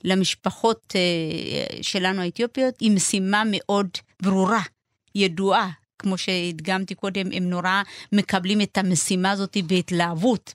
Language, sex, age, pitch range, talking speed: Hebrew, female, 30-49, 180-210 Hz, 100 wpm